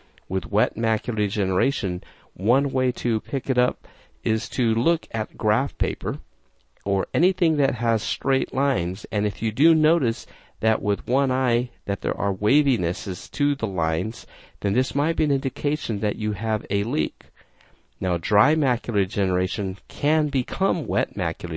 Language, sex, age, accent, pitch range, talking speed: English, male, 50-69, American, 95-130 Hz, 160 wpm